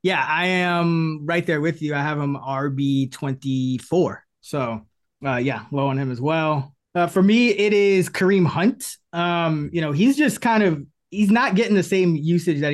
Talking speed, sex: 190 wpm, male